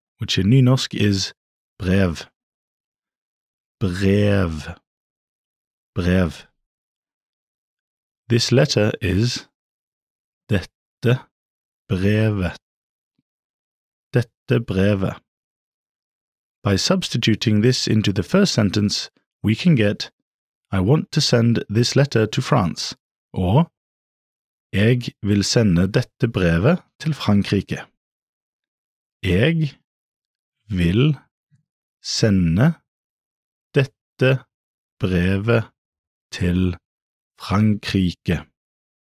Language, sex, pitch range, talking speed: English, male, 95-130 Hz, 70 wpm